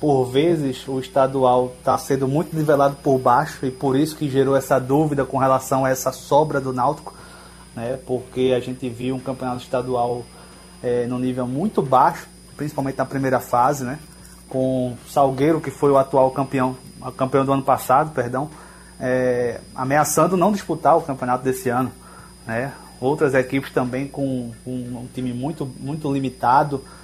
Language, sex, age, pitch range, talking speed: Portuguese, male, 20-39, 130-155 Hz, 160 wpm